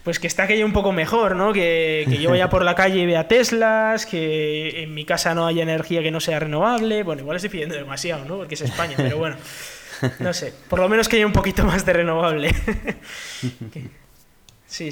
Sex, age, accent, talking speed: male, 20-39, Spanish, 215 wpm